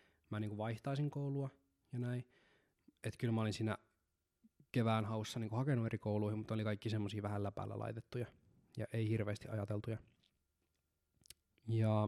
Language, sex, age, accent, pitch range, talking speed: Finnish, male, 20-39, native, 105-130 Hz, 155 wpm